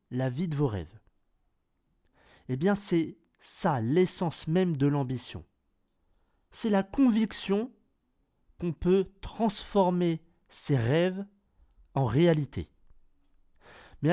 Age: 40-59